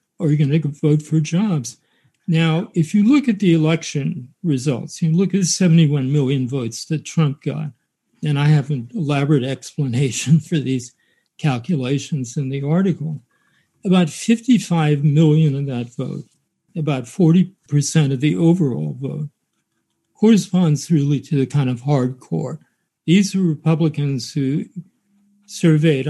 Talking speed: 140 wpm